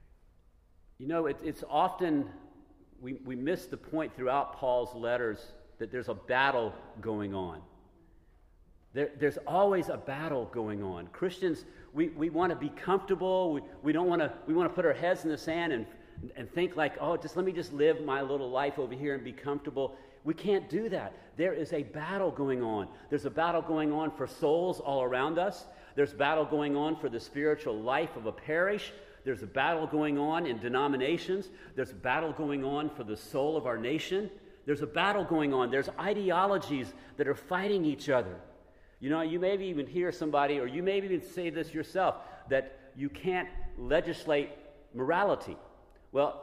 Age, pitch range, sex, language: 50-69, 130-180 Hz, male, English